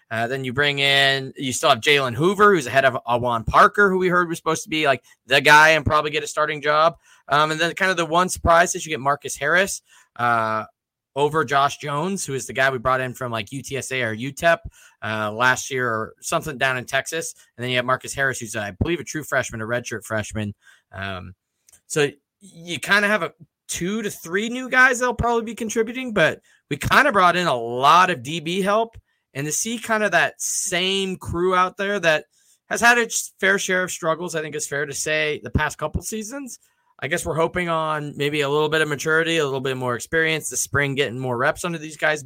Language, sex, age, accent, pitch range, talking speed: English, male, 20-39, American, 130-180 Hz, 230 wpm